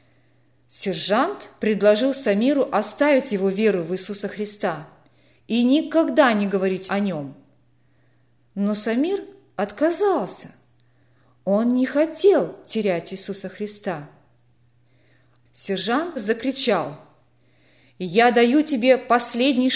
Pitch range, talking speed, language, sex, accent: 165-255 Hz, 90 wpm, Russian, female, native